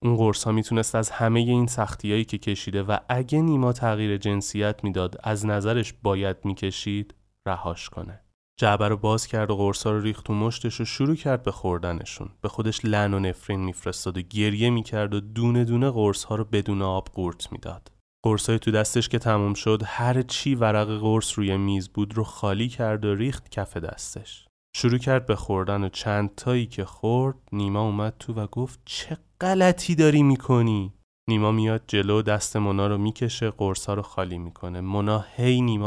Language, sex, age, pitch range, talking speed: Persian, male, 30-49, 100-115 Hz, 180 wpm